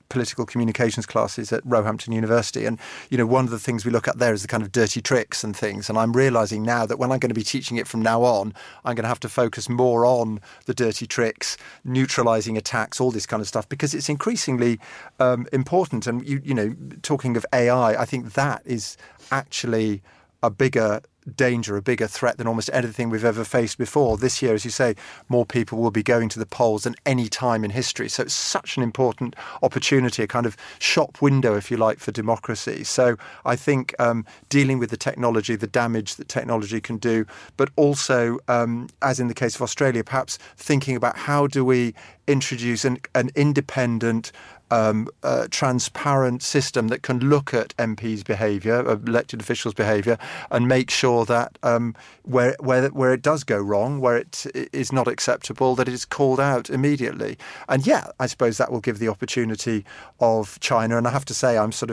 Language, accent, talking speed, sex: English, British, 205 wpm, male